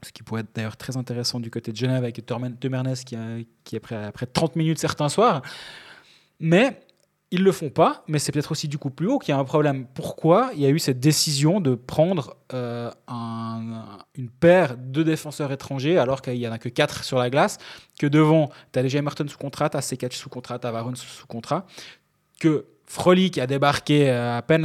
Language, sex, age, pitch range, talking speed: French, male, 20-39, 130-160 Hz, 225 wpm